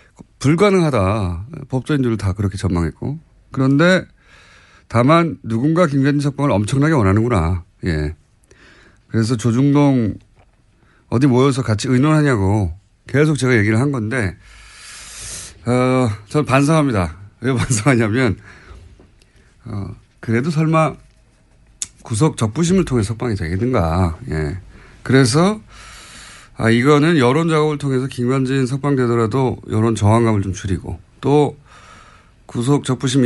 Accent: native